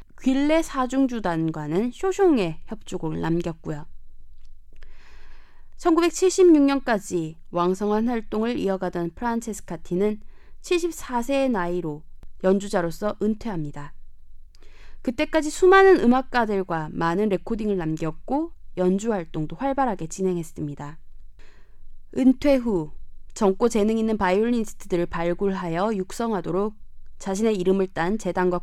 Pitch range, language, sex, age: 170-245 Hz, Korean, female, 20-39